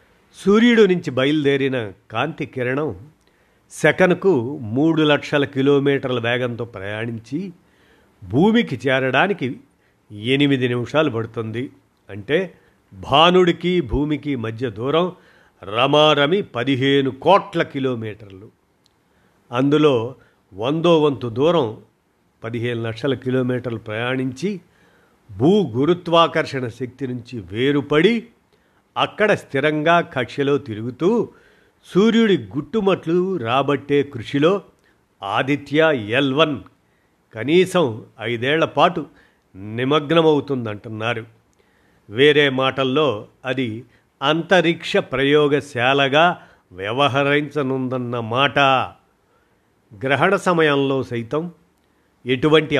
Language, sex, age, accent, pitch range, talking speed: Telugu, male, 50-69, native, 125-160 Hz, 70 wpm